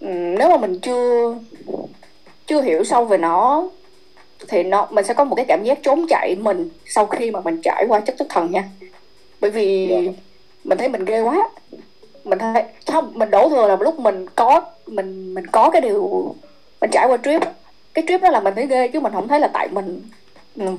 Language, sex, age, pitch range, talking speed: Vietnamese, female, 20-39, 195-330 Hz, 210 wpm